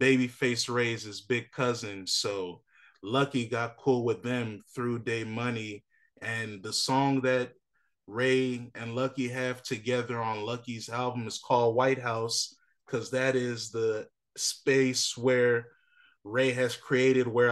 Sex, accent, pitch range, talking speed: male, American, 120-135 Hz, 135 wpm